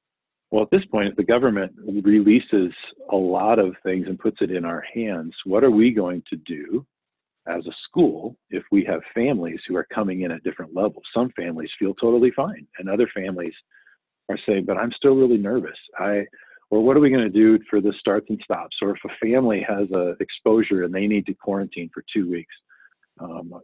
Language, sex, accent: English, male, American